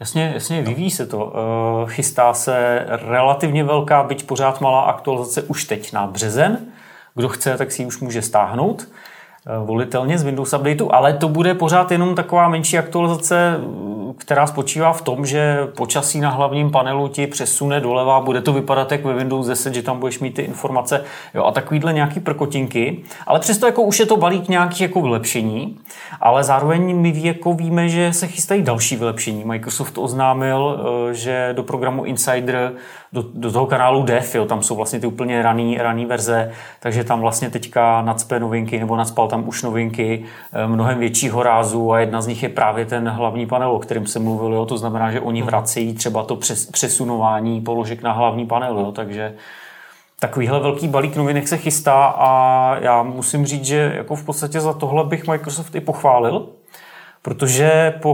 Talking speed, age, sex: 170 wpm, 30-49, male